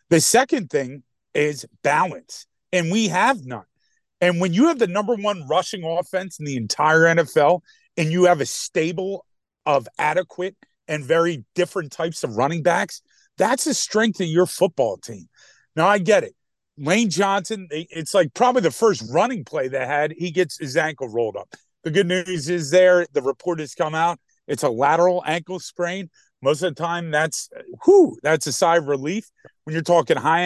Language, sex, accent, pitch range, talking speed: English, male, American, 150-195 Hz, 185 wpm